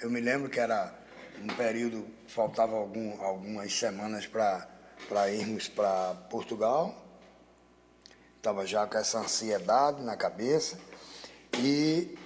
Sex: male